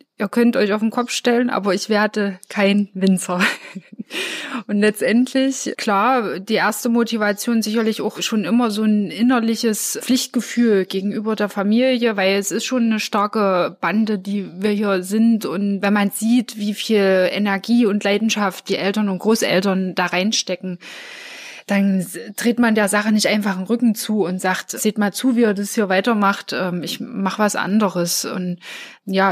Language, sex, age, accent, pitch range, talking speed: German, female, 20-39, German, 195-235 Hz, 165 wpm